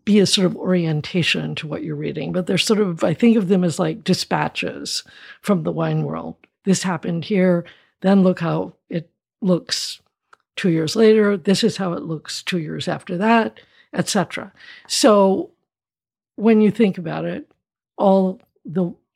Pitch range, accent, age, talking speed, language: 170-200 Hz, American, 60-79, 165 wpm, English